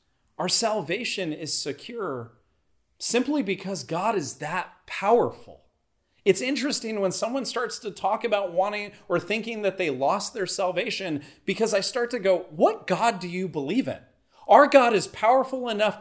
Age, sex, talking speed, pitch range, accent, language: 30-49, male, 155 wpm, 145-210 Hz, American, English